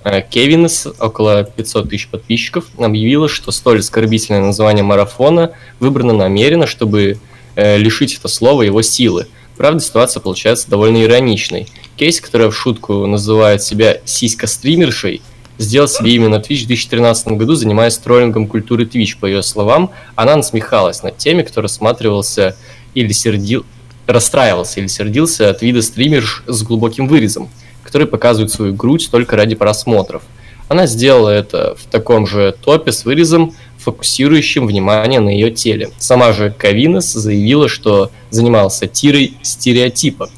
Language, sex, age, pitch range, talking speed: Russian, male, 20-39, 105-125 Hz, 135 wpm